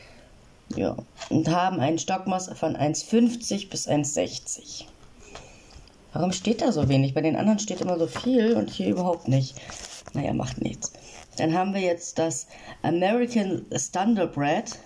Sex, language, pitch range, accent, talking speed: female, German, 155-195 Hz, German, 145 wpm